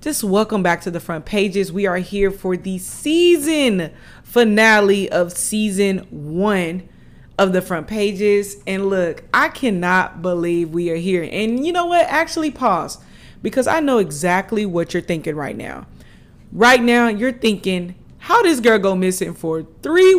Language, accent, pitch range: English, American, 170-220 Hz